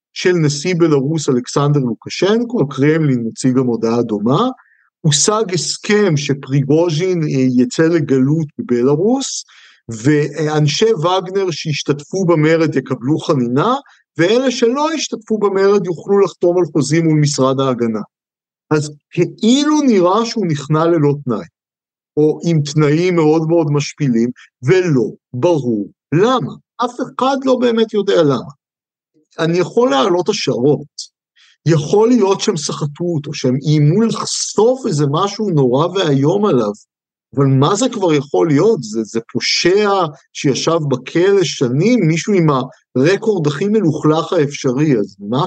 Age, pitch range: 50-69, 140-195 Hz